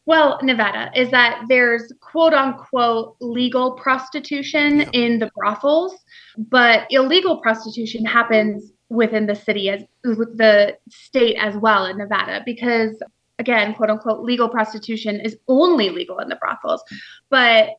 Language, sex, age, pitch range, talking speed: English, female, 20-39, 215-255 Hz, 130 wpm